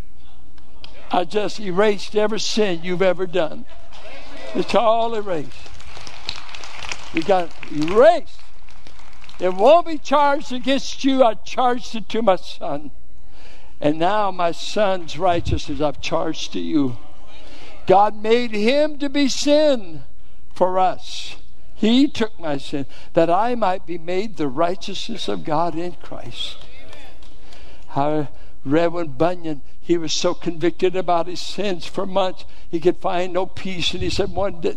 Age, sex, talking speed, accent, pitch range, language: 60-79, male, 135 wpm, American, 170-220 Hz, English